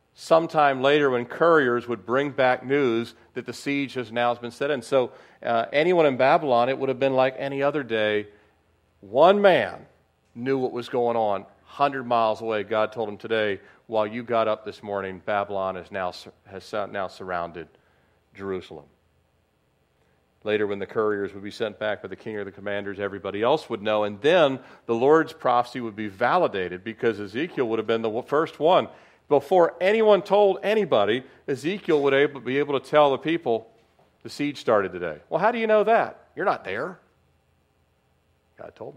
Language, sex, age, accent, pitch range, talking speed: English, male, 40-59, American, 95-135 Hz, 175 wpm